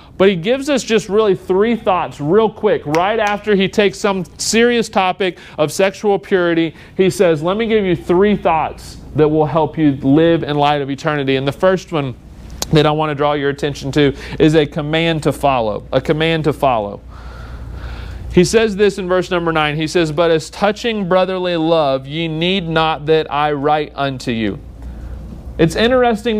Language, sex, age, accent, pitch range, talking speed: English, male, 40-59, American, 160-195 Hz, 185 wpm